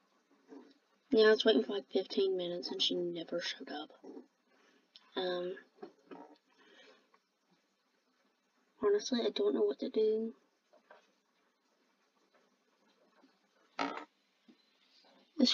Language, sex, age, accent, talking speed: English, female, 20-39, American, 90 wpm